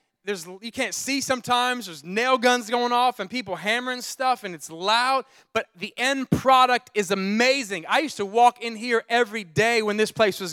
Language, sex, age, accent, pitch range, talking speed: English, male, 30-49, American, 195-250 Hz, 200 wpm